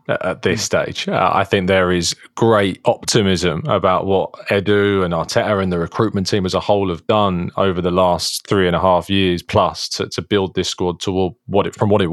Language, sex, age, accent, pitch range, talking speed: English, male, 20-39, British, 95-110 Hz, 220 wpm